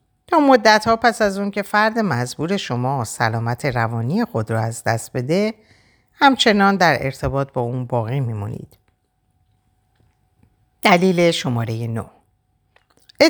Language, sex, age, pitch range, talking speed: Persian, female, 50-69, 115-175 Hz, 115 wpm